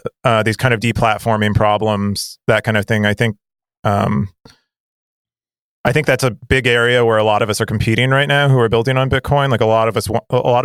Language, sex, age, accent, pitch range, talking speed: English, male, 30-49, American, 110-125 Hz, 230 wpm